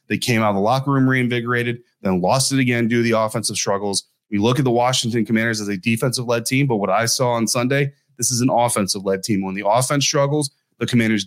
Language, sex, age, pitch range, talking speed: English, male, 30-49, 110-130 Hz, 235 wpm